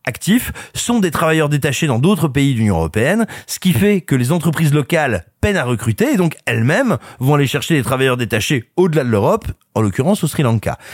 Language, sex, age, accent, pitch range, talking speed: French, male, 30-49, French, 105-150 Hz, 205 wpm